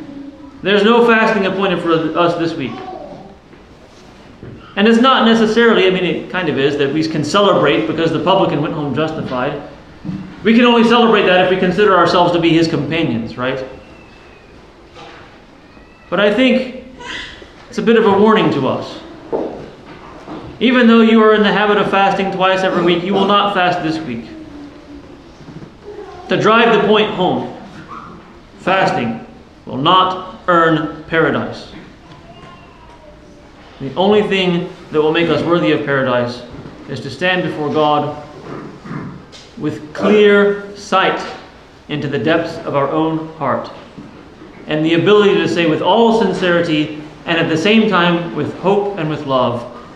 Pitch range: 150-205 Hz